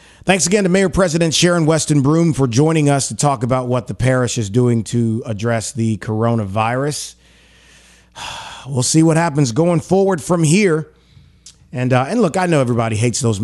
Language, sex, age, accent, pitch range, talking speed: English, male, 30-49, American, 115-155 Hz, 180 wpm